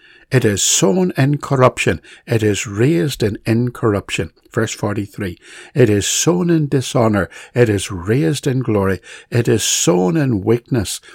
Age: 60-79